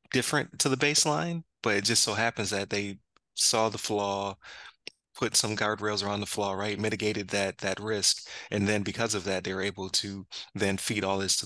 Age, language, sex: 20-39, English, male